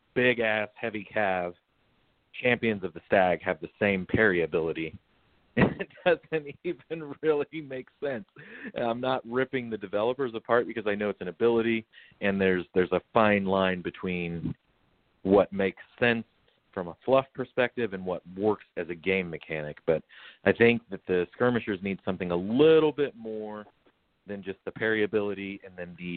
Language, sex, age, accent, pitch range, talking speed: English, male, 40-59, American, 90-115 Hz, 165 wpm